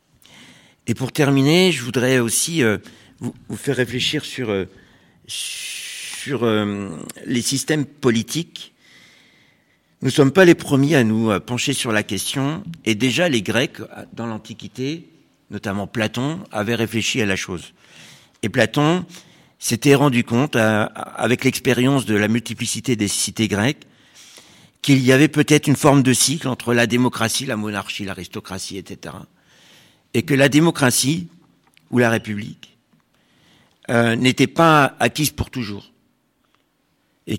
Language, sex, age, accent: French, male, 60-79, French